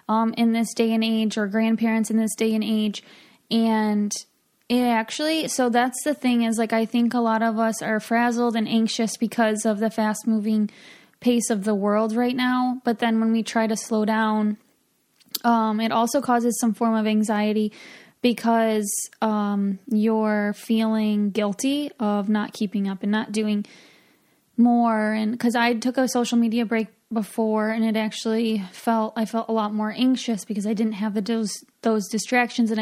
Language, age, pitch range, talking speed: English, 20-39, 220-235 Hz, 180 wpm